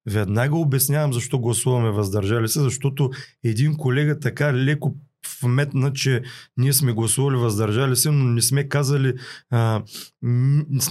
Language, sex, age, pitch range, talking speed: Bulgarian, male, 30-49, 120-145 Hz, 125 wpm